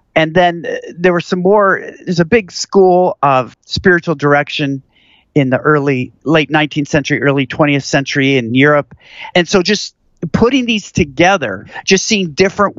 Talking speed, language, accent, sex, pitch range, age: 160 wpm, English, American, male, 145-185 Hz, 50-69